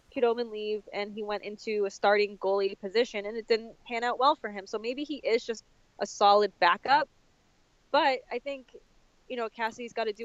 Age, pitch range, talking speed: 10-29, 210-245 Hz, 205 wpm